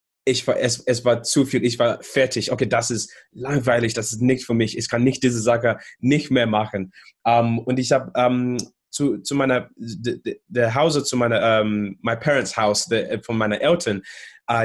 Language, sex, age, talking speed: German, male, 20-39, 200 wpm